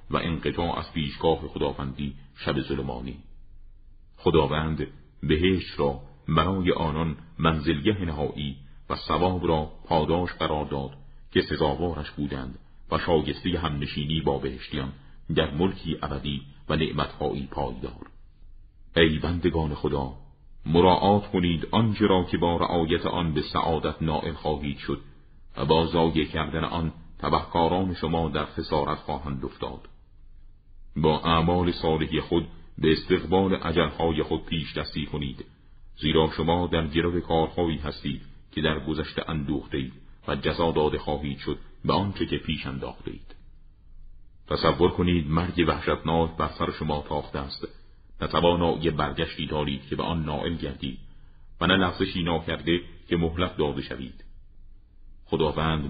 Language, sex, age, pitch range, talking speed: Persian, male, 40-59, 75-85 Hz, 130 wpm